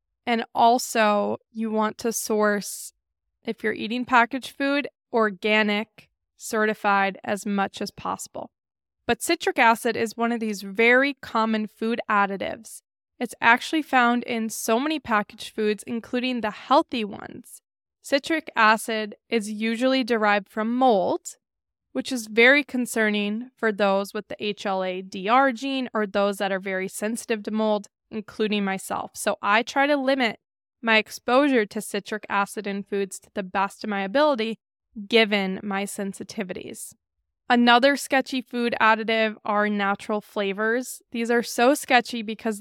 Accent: American